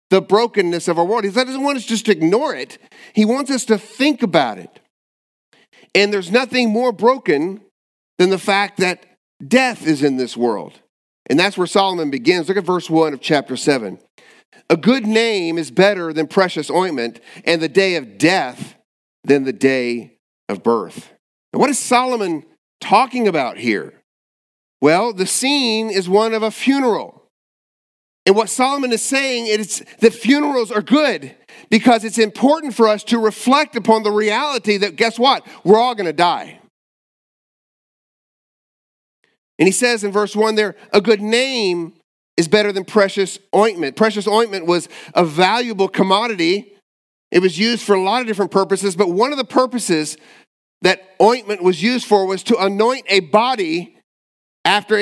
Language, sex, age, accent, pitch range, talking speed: English, male, 50-69, American, 185-235 Hz, 165 wpm